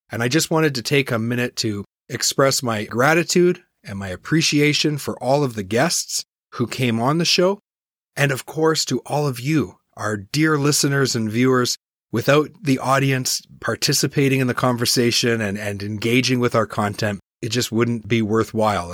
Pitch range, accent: 110-135 Hz, American